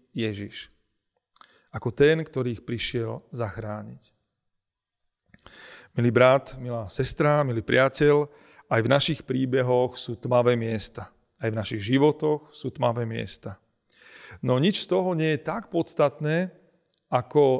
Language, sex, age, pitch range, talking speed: Slovak, male, 40-59, 115-150 Hz, 125 wpm